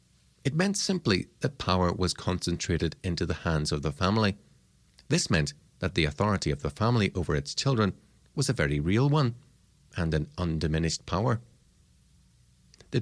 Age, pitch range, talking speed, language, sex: 40-59, 80-110 Hz, 155 wpm, English, male